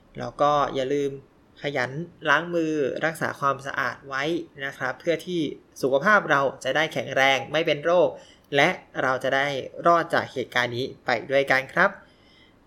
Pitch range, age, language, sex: 135-165 Hz, 20-39, Thai, male